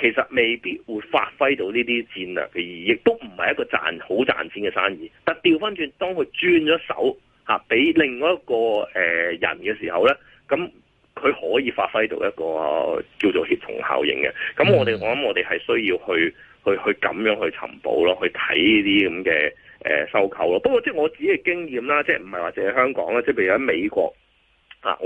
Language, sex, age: Chinese, male, 30-49